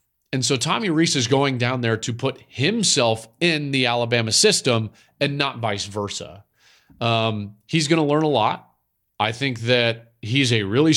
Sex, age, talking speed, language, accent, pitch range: male, 40-59, 175 wpm, English, American, 115-165 Hz